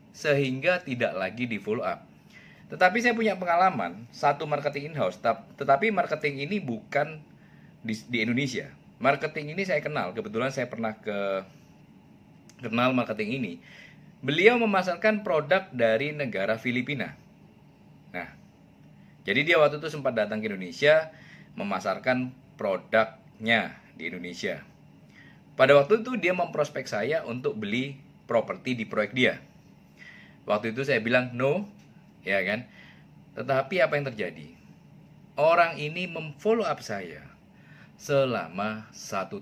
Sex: male